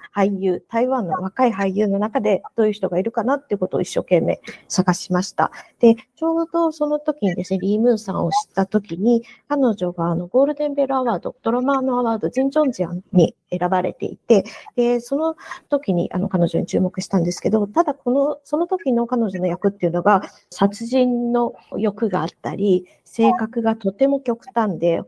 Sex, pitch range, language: female, 195-265 Hz, Japanese